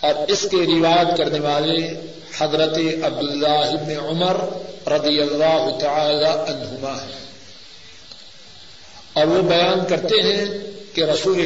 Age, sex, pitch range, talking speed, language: 50-69, male, 160-200 Hz, 115 wpm, Urdu